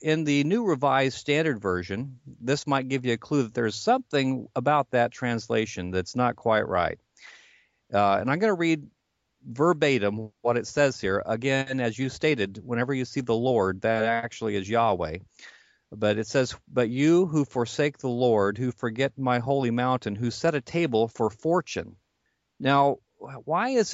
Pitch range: 115-145 Hz